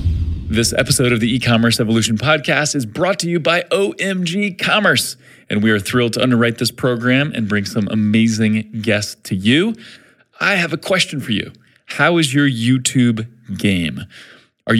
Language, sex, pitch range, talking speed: English, male, 110-150 Hz, 170 wpm